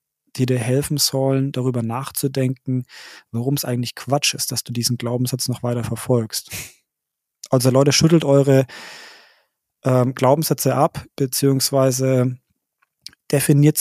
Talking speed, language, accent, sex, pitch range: 115 wpm, German, German, male, 130-150 Hz